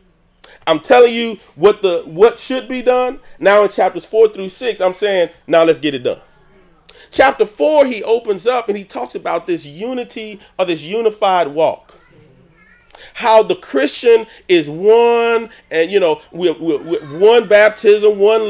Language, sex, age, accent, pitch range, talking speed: English, male, 30-49, American, 195-275 Hz, 160 wpm